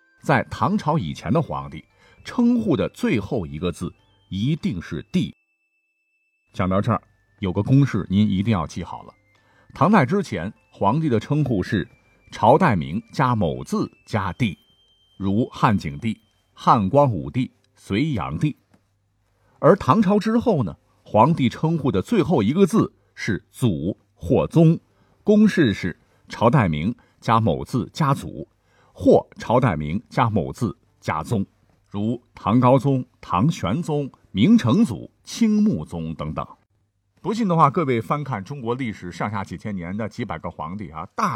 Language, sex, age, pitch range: Chinese, male, 50-69, 95-150 Hz